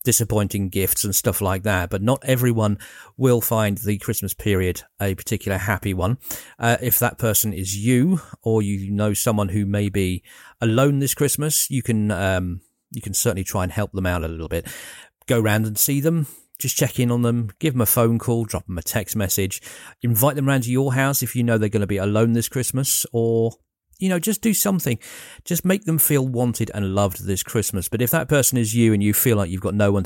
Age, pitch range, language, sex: 40-59, 100-125 Hz, English, male